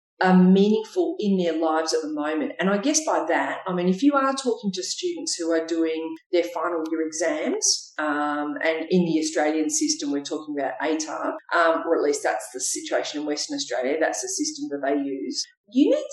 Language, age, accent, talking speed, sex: English, 40-59, Australian, 210 wpm, female